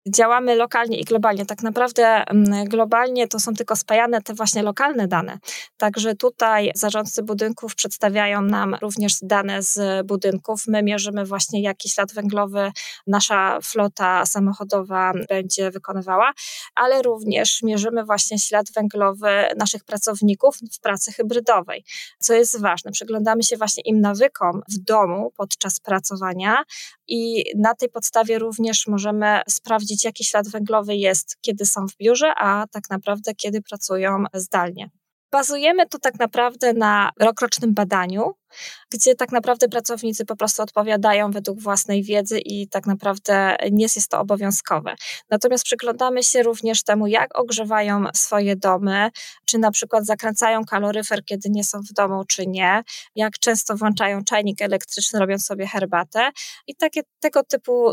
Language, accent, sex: Polish, native, female